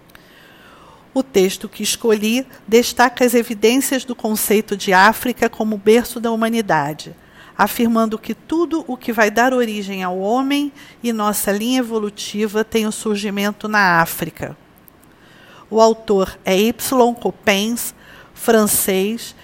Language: Portuguese